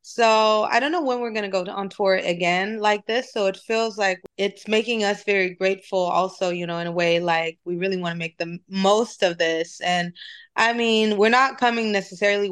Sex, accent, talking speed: female, American, 220 wpm